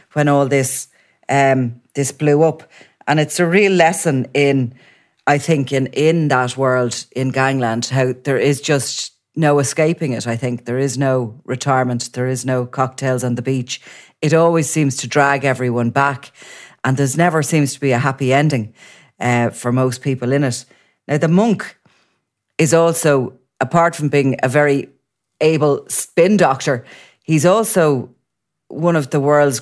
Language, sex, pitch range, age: English, female, 130-155 Hz, 30-49